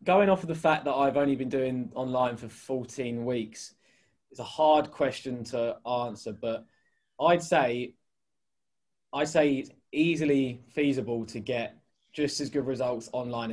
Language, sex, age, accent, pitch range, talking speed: English, male, 20-39, British, 120-145 Hz, 155 wpm